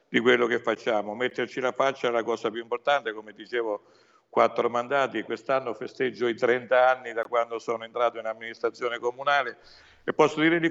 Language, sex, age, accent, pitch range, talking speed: Italian, male, 60-79, native, 115-140 Hz, 180 wpm